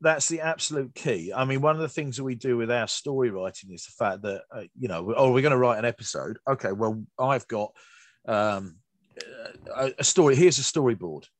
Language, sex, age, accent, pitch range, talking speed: English, male, 40-59, British, 110-135 Hz, 215 wpm